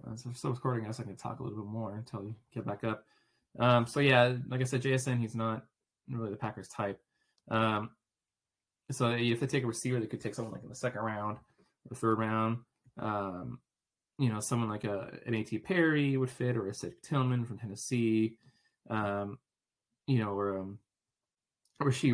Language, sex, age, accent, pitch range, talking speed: English, male, 20-39, American, 105-125 Hz, 205 wpm